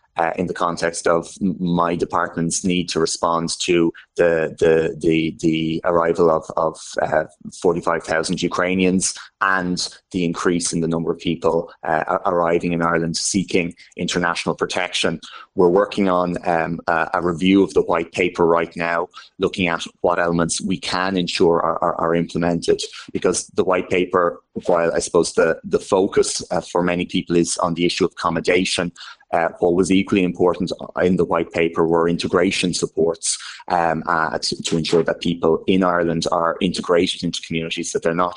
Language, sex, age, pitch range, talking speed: English, male, 30-49, 85-90 Hz, 165 wpm